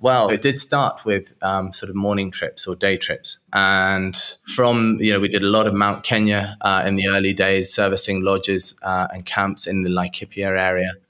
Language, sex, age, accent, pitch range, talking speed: English, male, 20-39, British, 95-110 Hz, 205 wpm